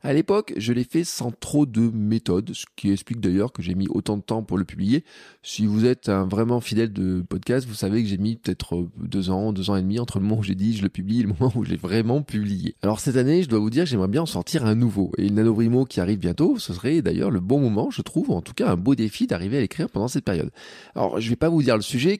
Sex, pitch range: male, 100-135 Hz